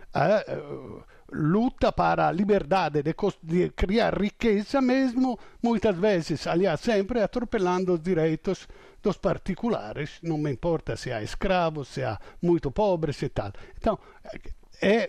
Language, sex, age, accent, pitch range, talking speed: Portuguese, male, 50-69, Italian, 160-205 Hz, 140 wpm